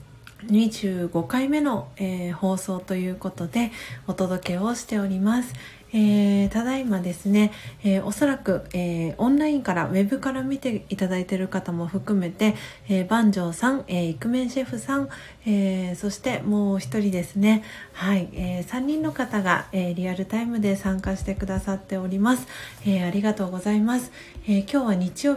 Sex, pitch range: female, 185-225 Hz